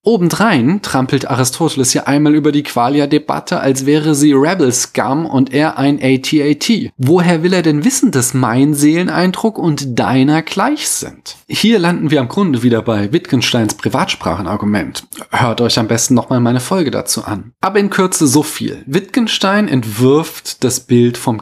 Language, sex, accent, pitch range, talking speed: German, male, German, 125-160 Hz, 155 wpm